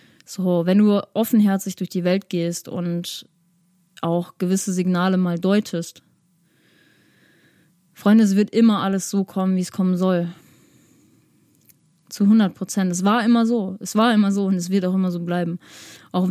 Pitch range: 175-195 Hz